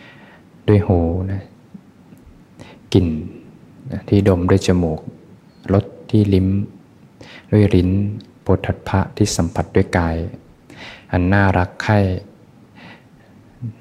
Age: 20-39